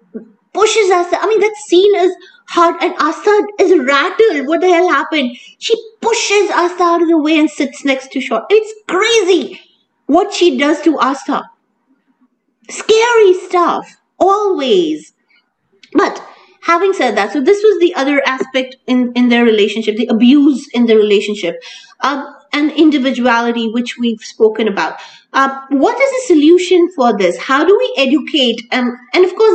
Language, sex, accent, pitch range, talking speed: English, female, Indian, 220-345 Hz, 155 wpm